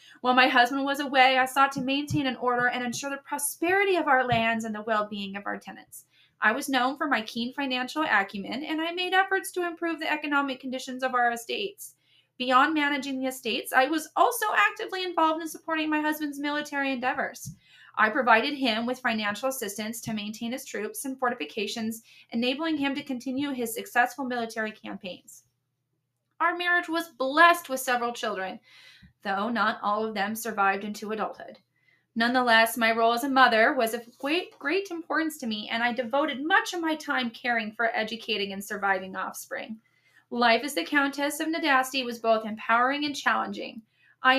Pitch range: 225-290 Hz